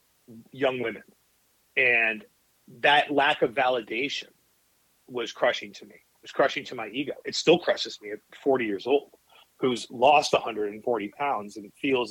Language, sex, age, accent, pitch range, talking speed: English, male, 40-59, American, 115-155 Hz, 155 wpm